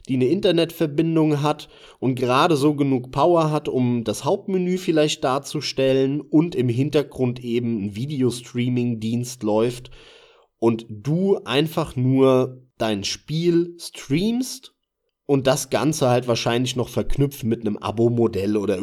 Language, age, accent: German, 30-49, German